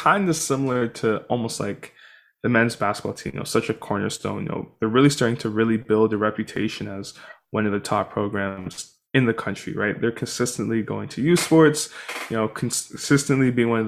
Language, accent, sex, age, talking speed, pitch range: English, American, male, 20-39, 205 wpm, 110-135 Hz